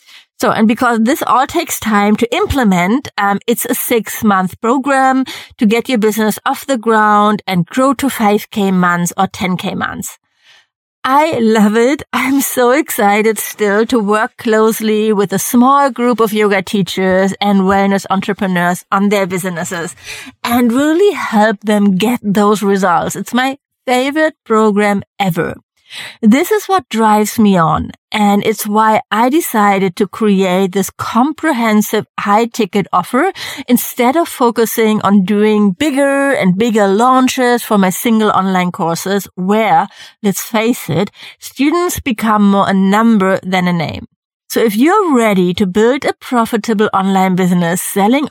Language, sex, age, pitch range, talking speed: English, female, 30-49, 195-245 Hz, 150 wpm